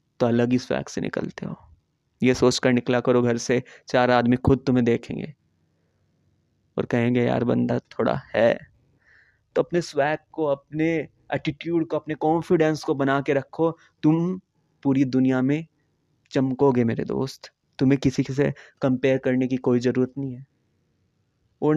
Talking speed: 155 wpm